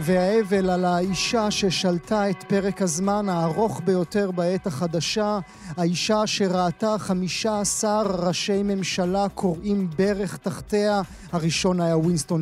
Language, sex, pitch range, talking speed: Hebrew, male, 180-205 Hz, 110 wpm